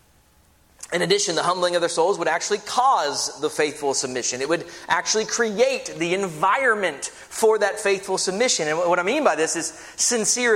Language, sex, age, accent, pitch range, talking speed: English, male, 30-49, American, 160-255 Hz, 175 wpm